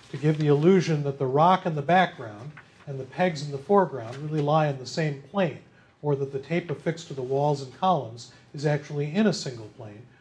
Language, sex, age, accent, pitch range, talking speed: English, male, 40-59, American, 135-170 Hz, 225 wpm